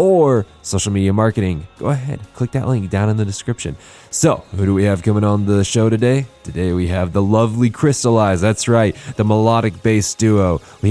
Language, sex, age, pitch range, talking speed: English, male, 20-39, 95-120 Hz, 200 wpm